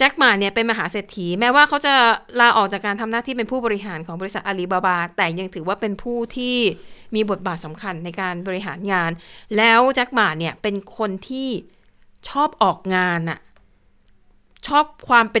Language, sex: Thai, female